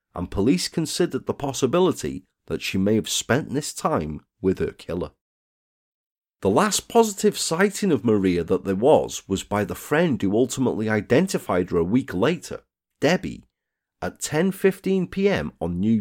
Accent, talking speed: British, 150 wpm